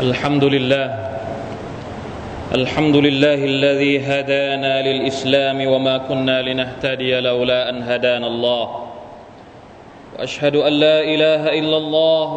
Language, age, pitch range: Thai, 30-49, 150-170 Hz